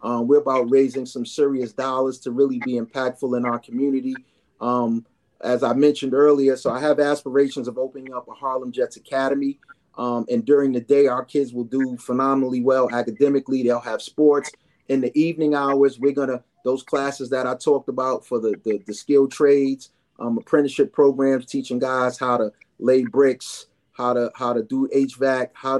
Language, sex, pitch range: English, male, 125-145 Hz